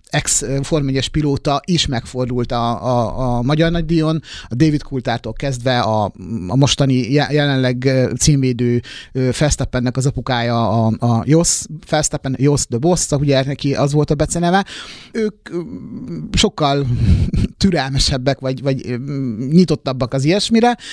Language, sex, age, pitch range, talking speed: Hungarian, male, 30-49, 125-160 Hz, 110 wpm